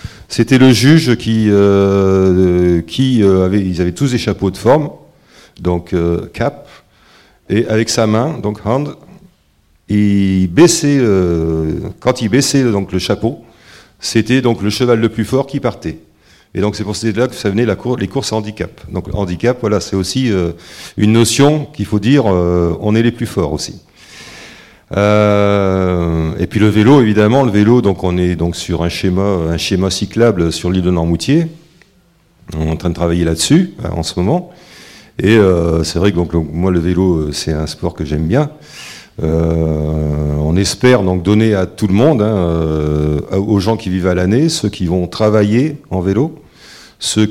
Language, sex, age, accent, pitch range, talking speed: French, male, 40-59, French, 85-115 Hz, 185 wpm